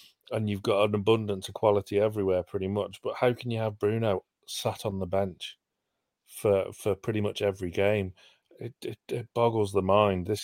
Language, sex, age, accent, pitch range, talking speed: English, male, 40-59, British, 95-115 Hz, 190 wpm